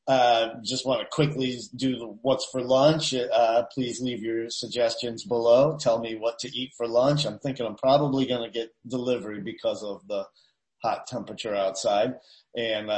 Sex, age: male, 40-59